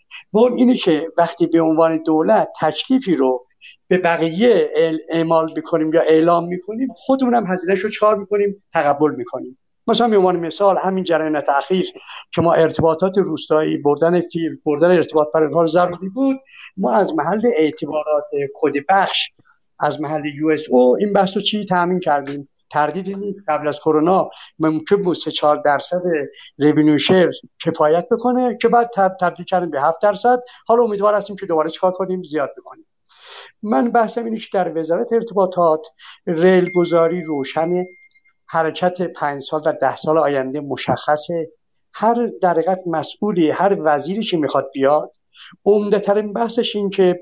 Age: 60-79